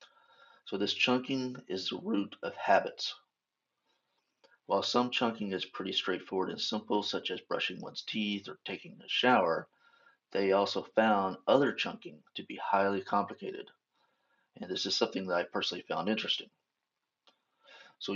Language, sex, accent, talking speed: English, male, American, 145 wpm